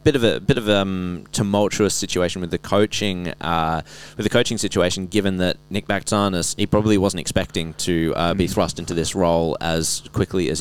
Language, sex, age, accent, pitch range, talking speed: English, male, 20-39, Australian, 85-100 Hz, 200 wpm